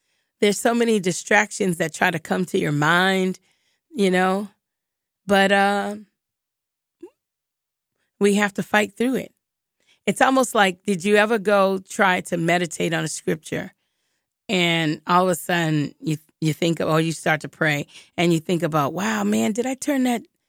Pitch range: 175-225 Hz